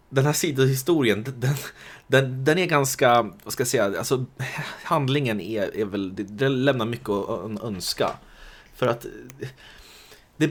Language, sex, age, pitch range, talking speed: Swedish, male, 20-39, 90-130 Hz, 145 wpm